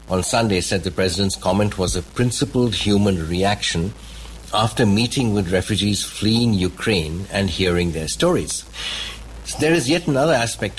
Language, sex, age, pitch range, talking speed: English, male, 60-79, 85-105 Hz, 150 wpm